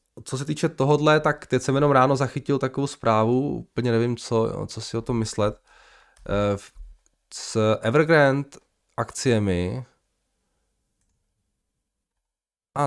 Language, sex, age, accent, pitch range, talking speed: Czech, male, 20-39, native, 95-130 Hz, 110 wpm